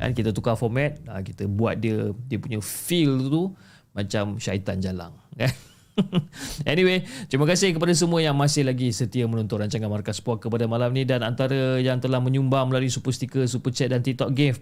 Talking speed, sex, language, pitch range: 175 wpm, male, Malay, 110-140 Hz